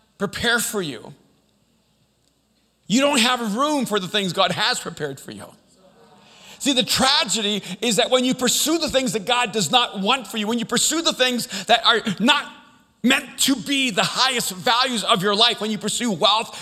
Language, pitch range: English, 155-240 Hz